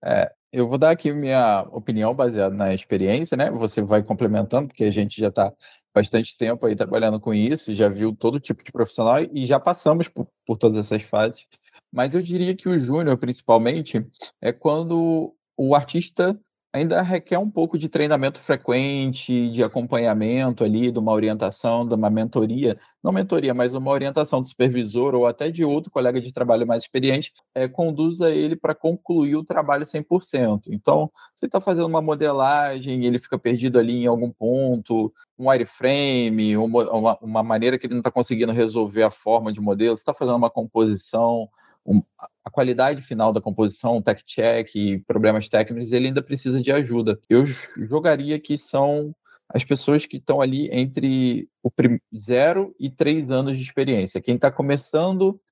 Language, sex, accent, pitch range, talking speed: Portuguese, male, Brazilian, 115-145 Hz, 175 wpm